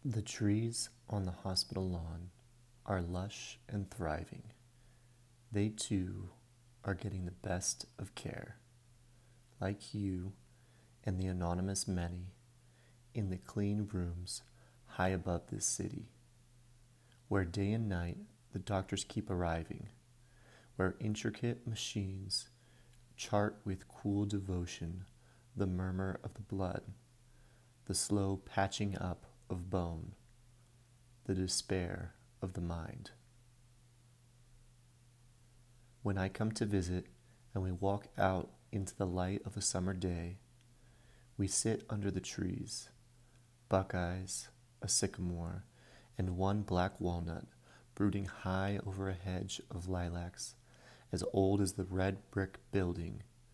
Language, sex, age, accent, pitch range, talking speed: English, male, 30-49, American, 95-120 Hz, 120 wpm